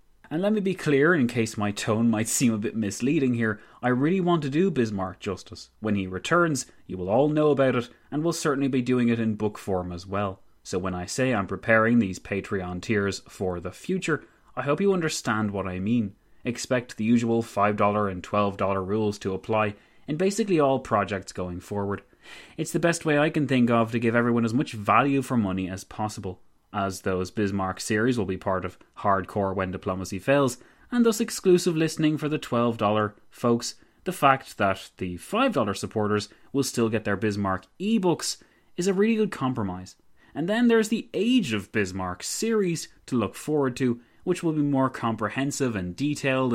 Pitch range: 100-140 Hz